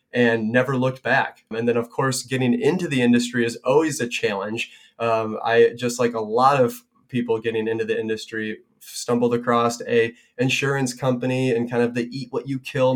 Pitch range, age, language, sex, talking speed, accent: 120-135 Hz, 20-39, English, male, 190 wpm, American